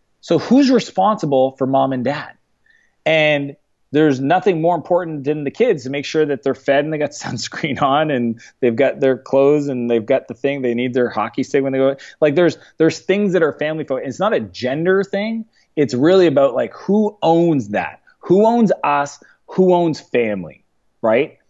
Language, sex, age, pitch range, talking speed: English, male, 30-49, 120-155 Hz, 195 wpm